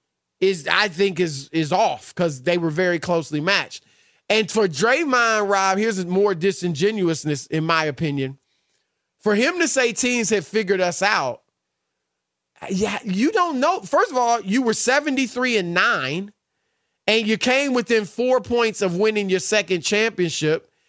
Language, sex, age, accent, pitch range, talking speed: English, male, 30-49, American, 205-310 Hz, 160 wpm